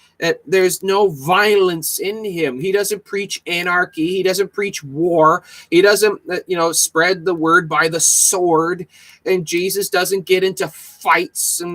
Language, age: English, 30-49